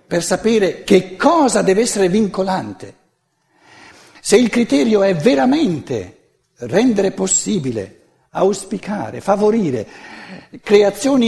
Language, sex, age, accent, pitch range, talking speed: Italian, male, 60-79, native, 165-245 Hz, 90 wpm